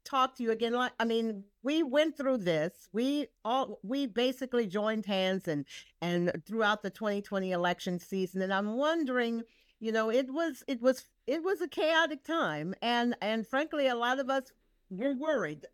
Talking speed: 180 wpm